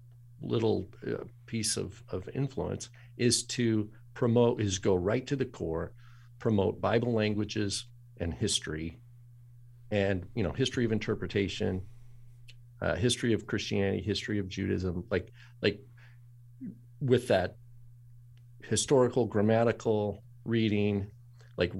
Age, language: 50-69, English